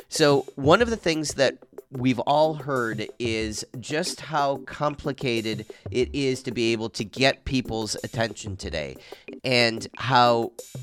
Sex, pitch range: male, 110-140 Hz